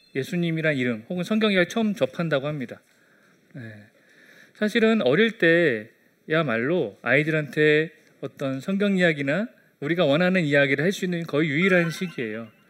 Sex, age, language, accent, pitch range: male, 30-49, Korean, native, 145-205 Hz